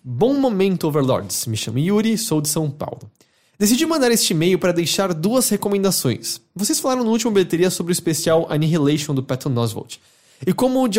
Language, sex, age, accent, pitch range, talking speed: Portuguese, male, 20-39, Brazilian, 130-190 Hz, 180 wpm